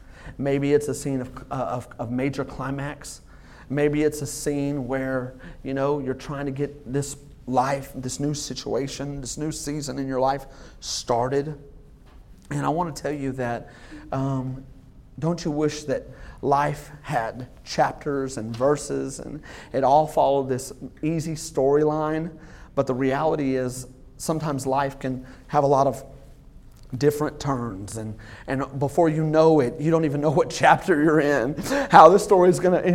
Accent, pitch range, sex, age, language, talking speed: American, 125-150 Hz, male, 30-49, English, 165 wpm